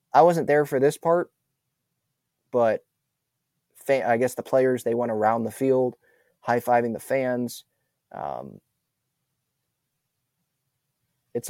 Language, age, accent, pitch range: English, 20-39, American, 120-155 Hz